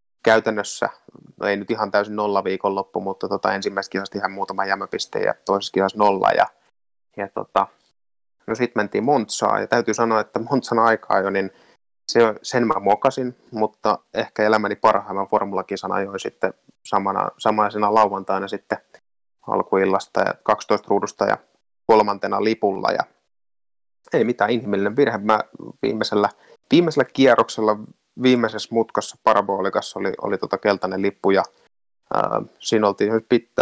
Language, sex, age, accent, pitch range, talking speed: Finnish, male, 20-39, native, 100-115 Hz, 140 wpm